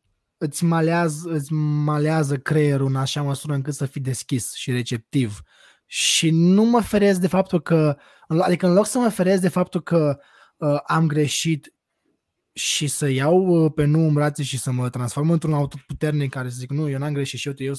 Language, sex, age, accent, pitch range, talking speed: Romanian, male, 20-39, native, 140-180 Hz, 185 wpm